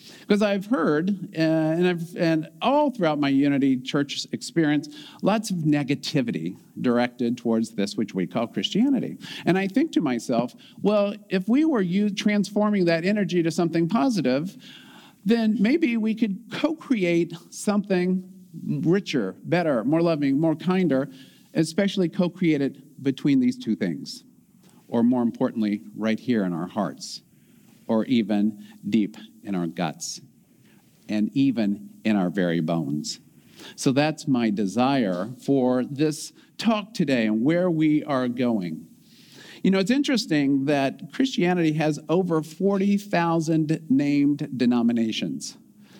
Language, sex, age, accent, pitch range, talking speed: English, male, 50-69, American, 130-200 Hz, 130 wpm